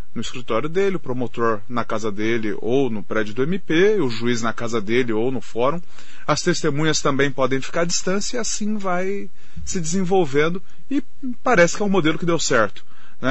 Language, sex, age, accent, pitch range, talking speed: Portuguese, male, 30-49, Brazilian, 140-180 Hz, 195 wpm